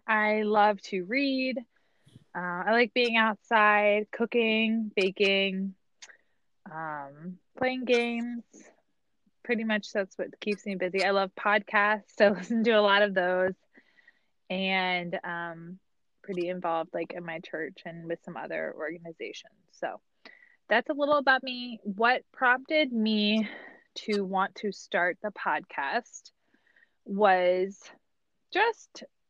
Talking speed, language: 125 wpm, English